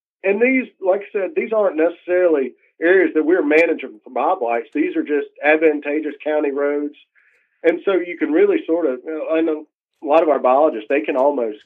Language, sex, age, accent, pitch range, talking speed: English, male, 40-59, American, 140-175 Hz, 200 wpm